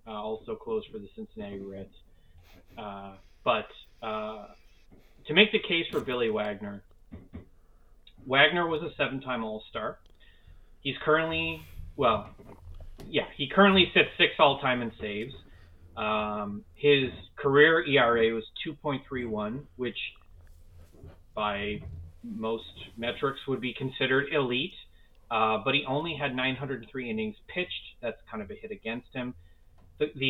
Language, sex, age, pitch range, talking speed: English, male, 30-49, 105-140 Hz, 125 wpm